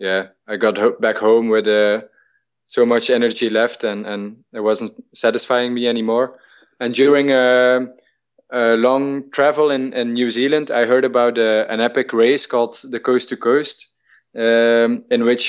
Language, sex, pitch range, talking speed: English, male, 110-125 Hz, 170 wpm